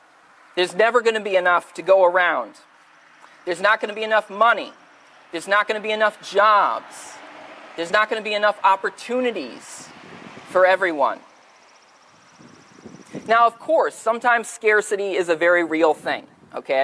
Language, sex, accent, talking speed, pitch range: English, male, American, 155 wpm, 175-230 Hz